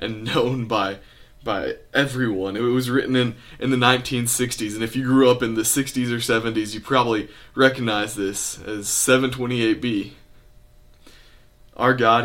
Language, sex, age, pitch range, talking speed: English, male, 20-39, 115-130 Hz, 145 wpm